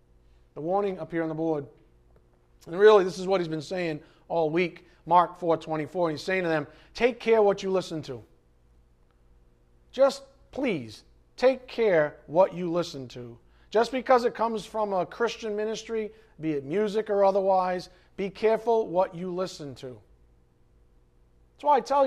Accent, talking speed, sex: American, 170 wpm, male